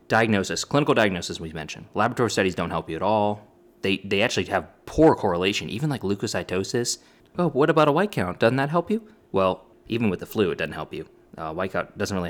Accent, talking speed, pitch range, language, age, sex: American, 225 wpm, 90-130 Hz, English, 20-39, male